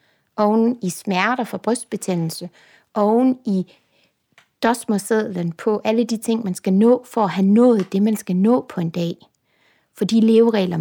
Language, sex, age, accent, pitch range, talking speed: Danish, female, 60-79, native, 200-250 Hz, 160 wpm